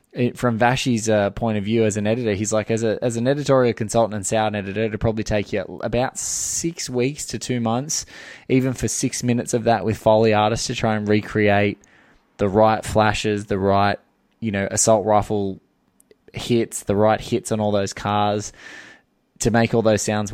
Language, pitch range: English, 105-115 Hz